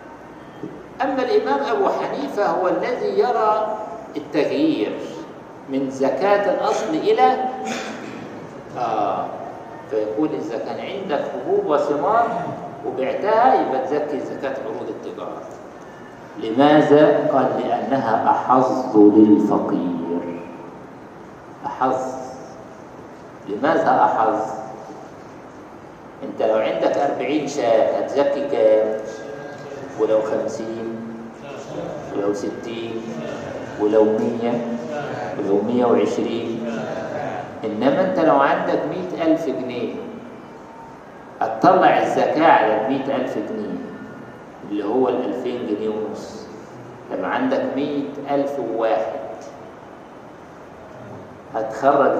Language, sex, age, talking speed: Arabic, male, 50-69, 85 wpm